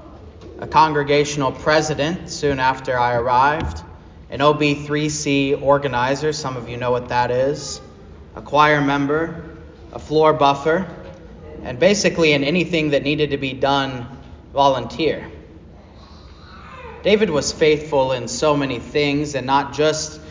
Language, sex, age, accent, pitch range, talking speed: English, male, 30-49, American, 110-150 Hz, 125 wpm